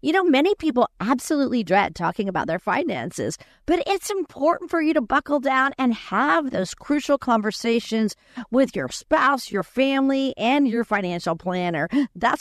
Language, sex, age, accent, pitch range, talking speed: English, female, 50-69, American, 195-275 Hz, 160 wpm